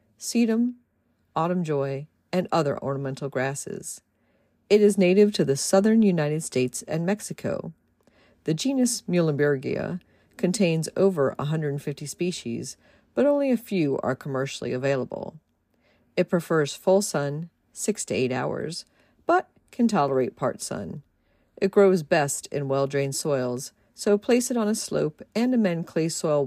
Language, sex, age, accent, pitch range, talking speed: English, female, 50-69, American, 135-205 Hz, 135 wpm